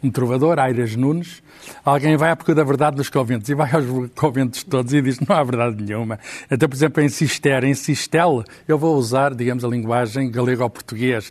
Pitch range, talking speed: 135-175 Hz, 200 wpm